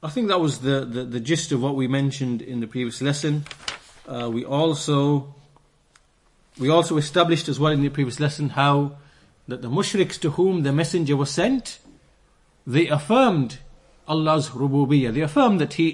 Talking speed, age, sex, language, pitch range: 175 wpm, 30-49, male, English, 130-160 Hz